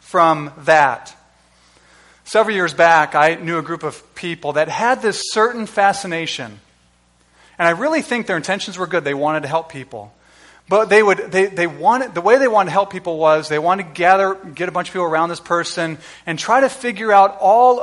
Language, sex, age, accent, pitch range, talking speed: English, male, 30-49, American, 150-210 Hz, 205 wpm